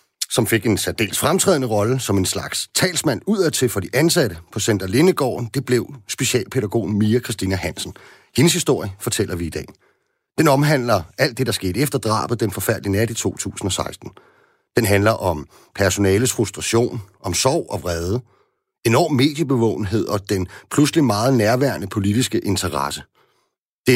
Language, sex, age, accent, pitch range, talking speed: Danish, male, 40-59, native, 95-130 Hz, 155 wpm